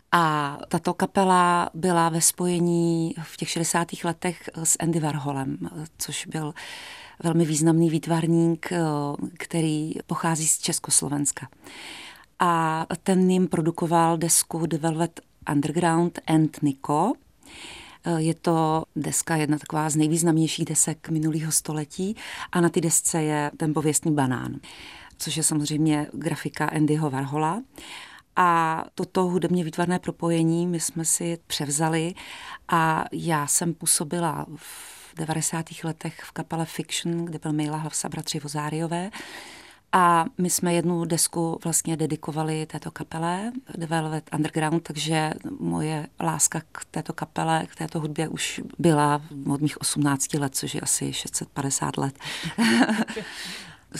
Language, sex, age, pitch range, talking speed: Czech, female, 30-49, 155-175 Hz, 125 wpm